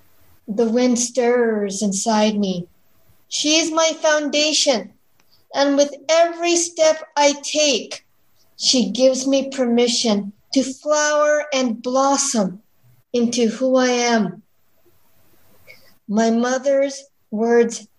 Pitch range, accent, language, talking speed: 220-295 Hz, American, English, 100 wpm